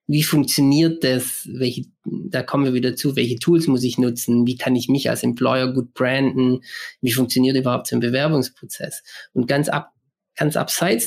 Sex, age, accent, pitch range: male, 20-39, German, 125-155 Hz